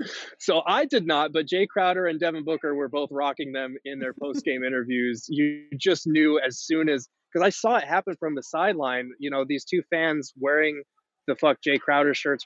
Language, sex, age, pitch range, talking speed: English, male, 20-39, 135-160 Hz, 205 wpm